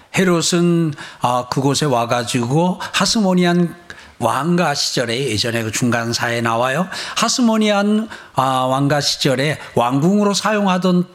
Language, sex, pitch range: Korean, male, 135-195 Hz